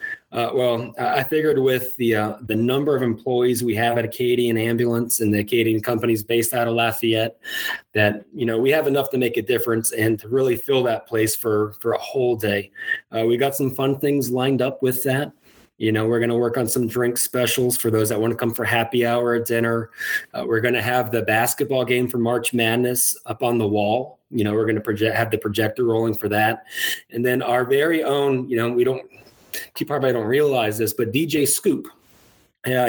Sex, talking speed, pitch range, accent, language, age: male, 220 wpm, 115-135 Hz, American, English, 20-39